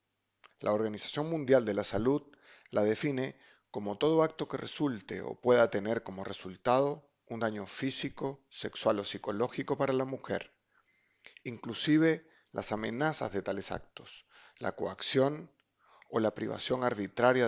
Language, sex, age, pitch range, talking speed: Spanish, male, 40-59, 105-140 Hz, 135 wpm